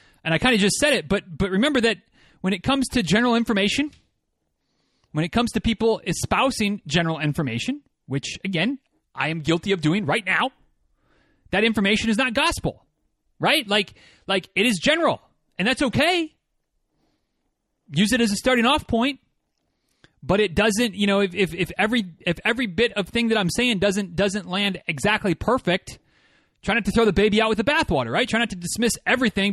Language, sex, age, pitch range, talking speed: English, male, 30-49, 180-230 Hz, 190 wpm